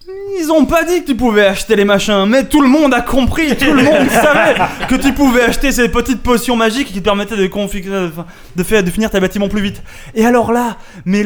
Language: French